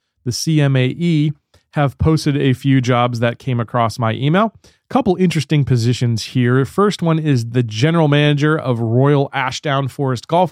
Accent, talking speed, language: American, 160 wpm, English